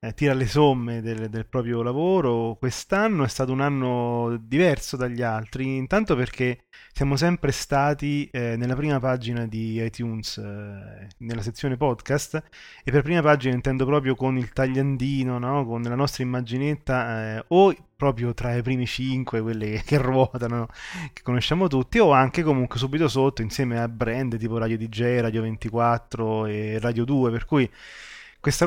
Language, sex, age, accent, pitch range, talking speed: Italian, male, 20-39, native, 115-135 Hz, 160 wpm